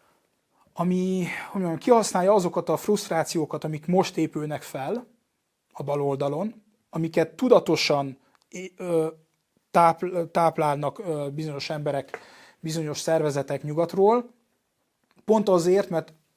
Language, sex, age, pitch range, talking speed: Hungarian, male, 30-49, 155-185 Hz, 90 wpm